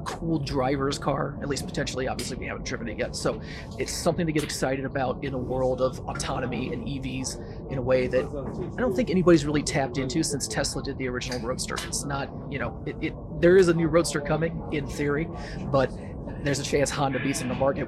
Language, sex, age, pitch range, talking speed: English, male, 30-49, 130-155 Hz, 220 wpm